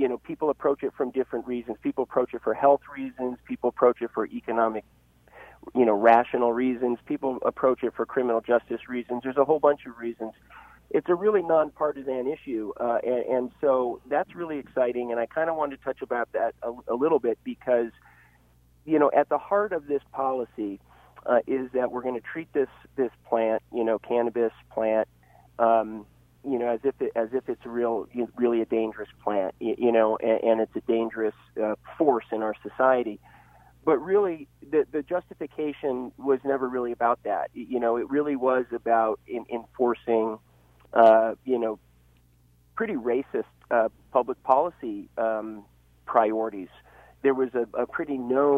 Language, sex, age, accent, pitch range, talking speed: English, male, 40-59, American, 110-135 Hz, 180 wpm